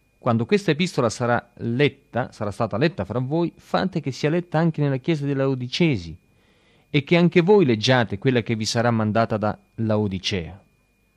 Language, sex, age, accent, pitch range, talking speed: Italian, male, 40-59, native, 105-160 Hz, 165 wpm